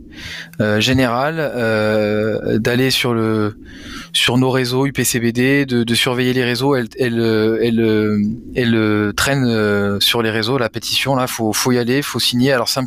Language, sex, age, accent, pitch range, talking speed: French, male, 20-39, French, 105-125 Hz, 175 wpm